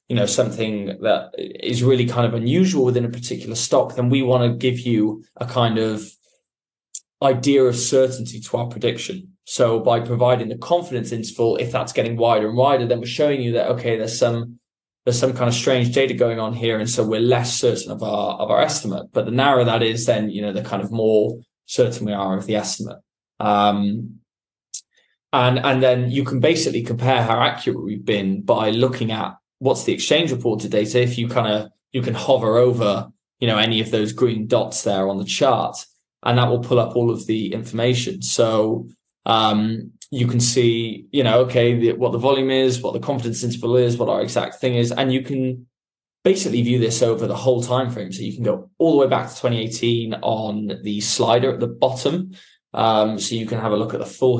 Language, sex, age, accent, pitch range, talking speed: English, male, 20-39, British, 110-125 Hz, 210 wpm